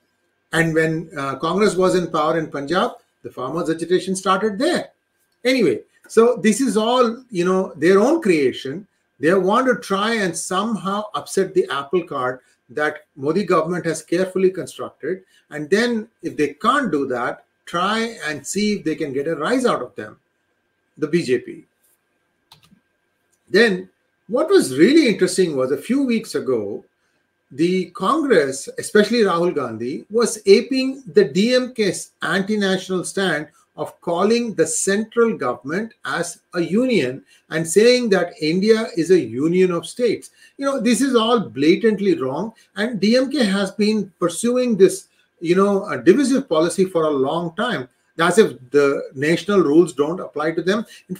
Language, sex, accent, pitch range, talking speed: English, male, Indian, 170-230 Hz, 155 wpm